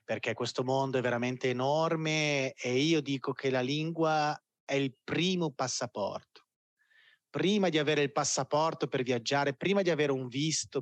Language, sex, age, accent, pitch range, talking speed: Italian, male, 30-49, native, 120-150 Hz, 155 wpm